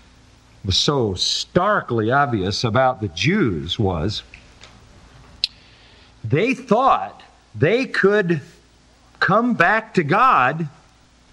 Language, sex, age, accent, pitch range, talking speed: English, male, 50-69, American, 120-170 Hz, 85 wpm